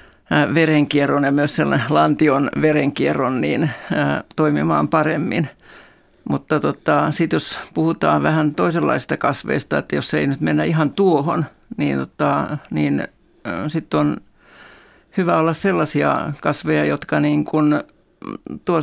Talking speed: 120 wpm